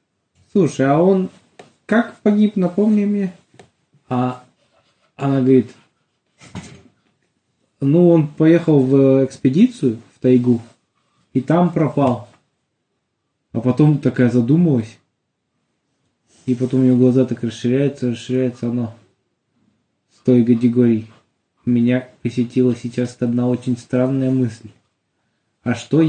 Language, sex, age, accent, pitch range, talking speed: Russian, male, 20-39, native, 120-150 Hz, 100 wpm